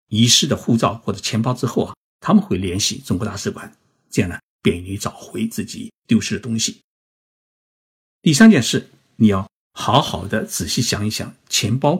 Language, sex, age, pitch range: Chinese, male, 50-69, 100-125 Hz